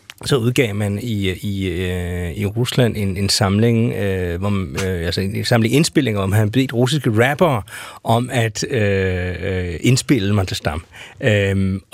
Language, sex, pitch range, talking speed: Danish, male, 100-125 Hz, 150 wpm